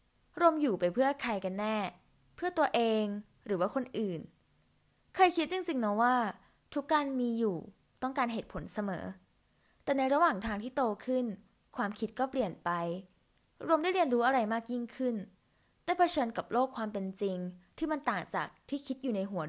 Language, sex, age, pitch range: Thai, female, 10-29, 195-270 Hz